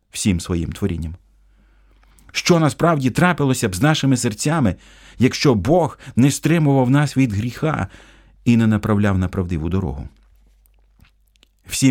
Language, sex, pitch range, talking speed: Ukrainian, male, 85-115 Hz, 120 wpm